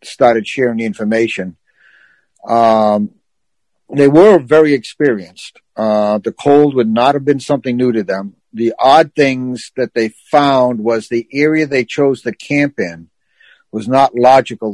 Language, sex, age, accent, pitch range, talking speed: English, male, 60-79, American, 115-135 Hz, 150 wpm